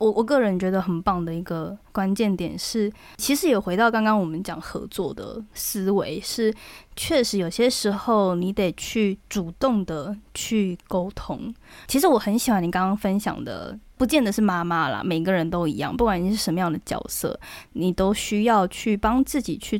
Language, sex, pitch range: Chinese, female, 185-235 Hz